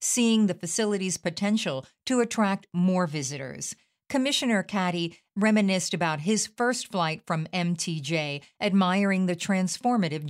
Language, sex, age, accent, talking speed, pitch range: English, female, 50-69, American, 115 wpm, 155-215 Hz